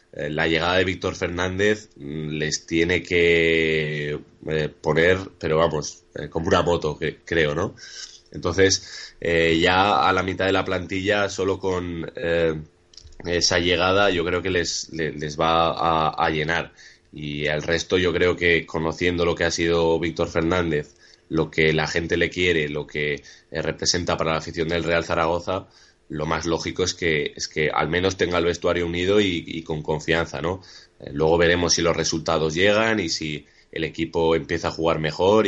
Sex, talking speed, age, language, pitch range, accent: male, 170 wpm, 20-39, Spanish, 80-90 Hz, Spanish